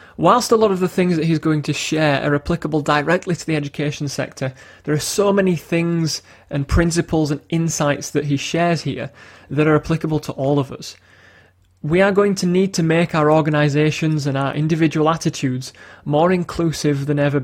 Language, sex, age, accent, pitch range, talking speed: English, male, 20-39, British, 135-165 Hz, 190 wpm